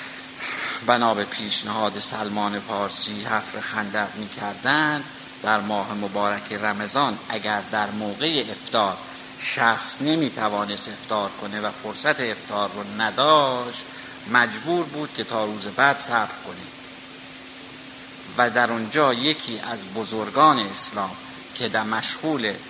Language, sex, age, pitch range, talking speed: Persian, male, 50-69, 105-130 Hz, 115 wpm